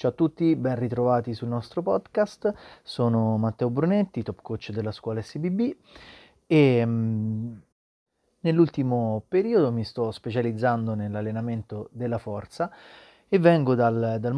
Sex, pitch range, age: male, 115-140 Hz, 30-49